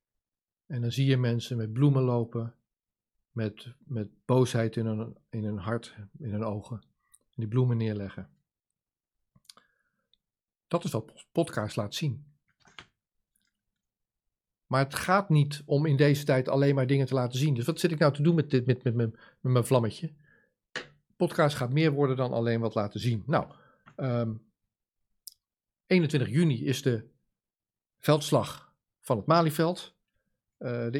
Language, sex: Dutch, male